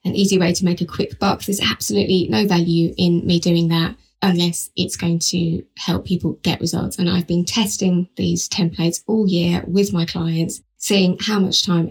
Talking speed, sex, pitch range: 195 wpm, female, 170-190 Hz